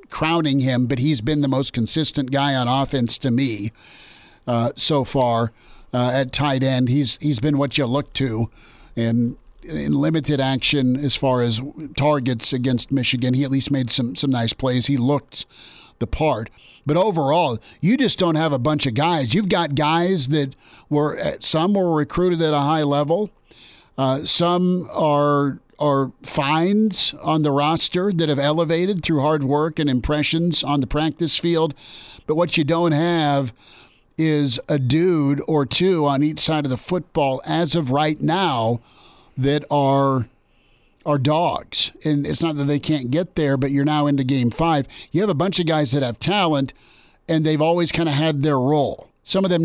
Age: 50-69